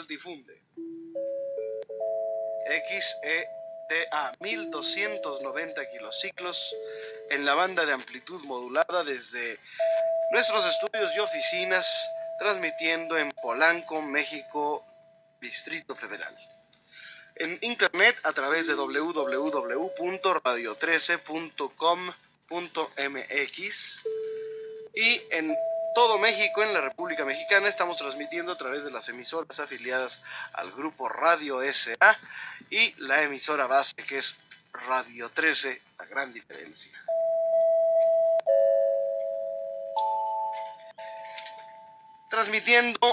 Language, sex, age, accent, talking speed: Spanish, male, 30-49, Mexican, 80 wpm